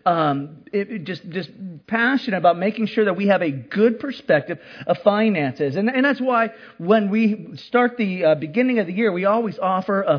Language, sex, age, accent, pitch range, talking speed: English, male, 40-59, American, 155-230 Hz, 190 wpm